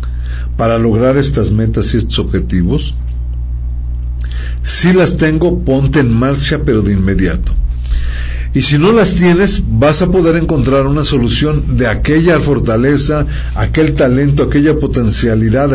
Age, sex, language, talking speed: 50-69, male, Spanish, 130 wpm